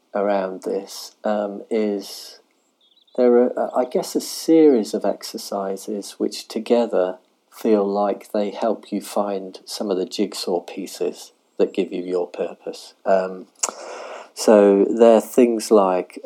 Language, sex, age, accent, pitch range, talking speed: English, male, 40-59, British, 95-105 Hz, 135 wpm